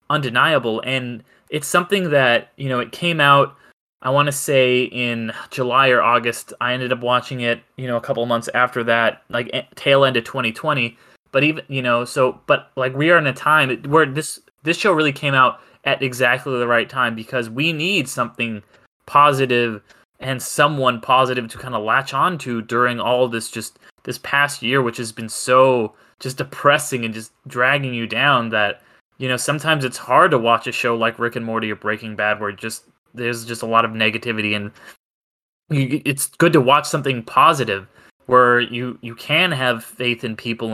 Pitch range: 115-135 Hz